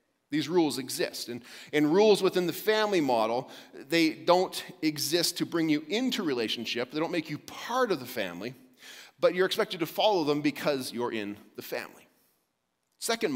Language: English